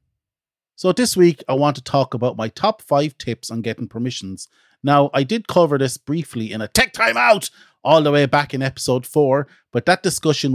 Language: English